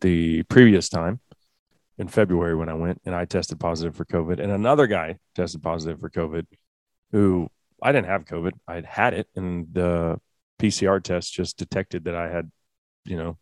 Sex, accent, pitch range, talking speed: male, American, 85-115 Hz, 180 wpm